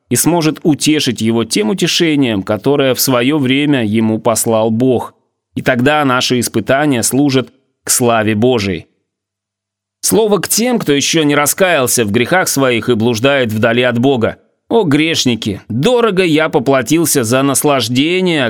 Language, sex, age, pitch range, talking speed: Russian, male, 30-49, 120-155 Hz, 140 wpm